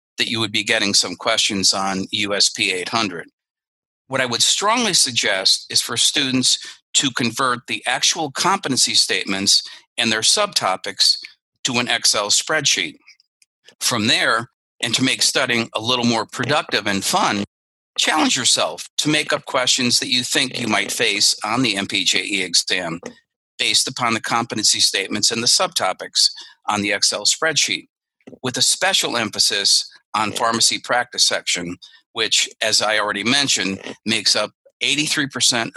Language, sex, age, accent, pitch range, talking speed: English, male, 50-69, American, 100-130 Hz, 145 wpm